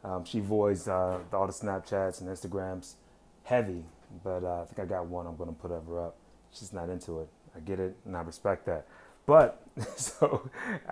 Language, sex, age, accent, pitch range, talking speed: English, male, 30-49, American, 95-115 Hz, 200 wpm